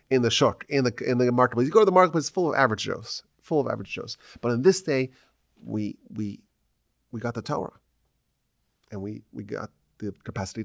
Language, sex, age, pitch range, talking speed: English, male, 30-49, 110-150 Hz, 210 wpm